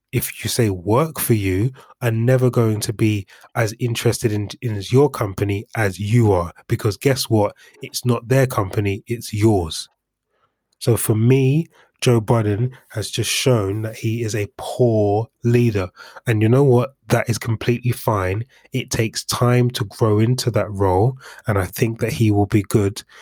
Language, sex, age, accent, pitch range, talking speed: English, male, 20-39, British, 105-125 Hz, 175 wpm